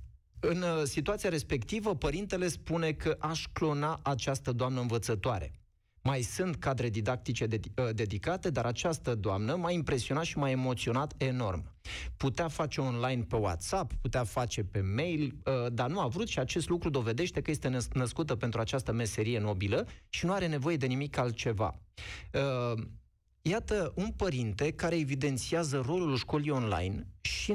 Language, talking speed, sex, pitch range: Romanian, 140 wpm, male, 115-150 Hz